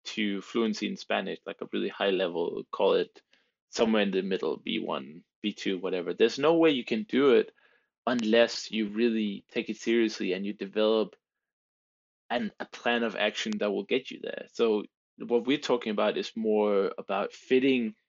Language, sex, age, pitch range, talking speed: English, male, 20-39, 100-120 Hz, 175 wpm